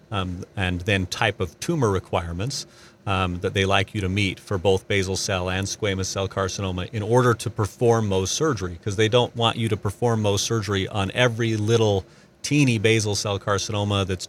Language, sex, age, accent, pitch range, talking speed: English, male, 40-59, American, 95-110 Hz, 190 wpm